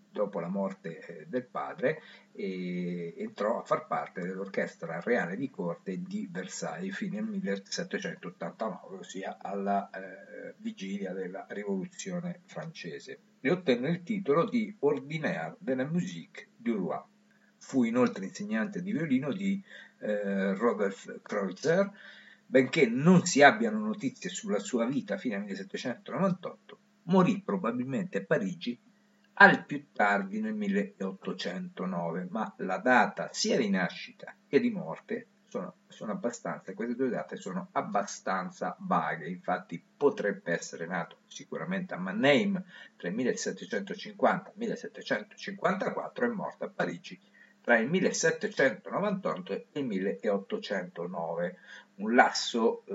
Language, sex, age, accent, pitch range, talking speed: Italian, male, 50-69, native, 140-215 Hz, 115 wpm